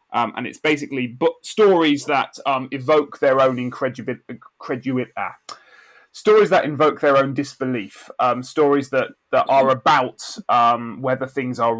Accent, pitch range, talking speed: British, 110-140 Hz, 135 wpm